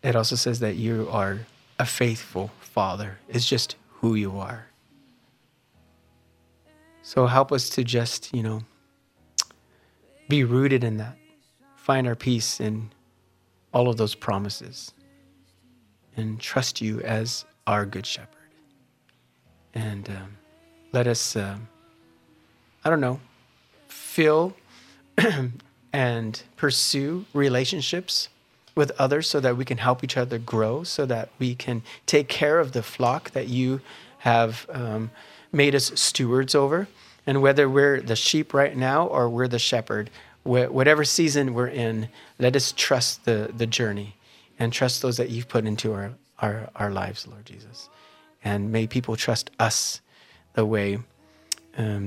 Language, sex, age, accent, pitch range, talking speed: English, male, 30-49, American, 110-130 Hz, 140 wpm